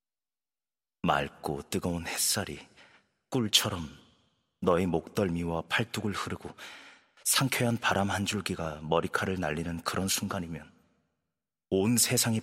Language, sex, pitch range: Korean, male, 80-105 Hz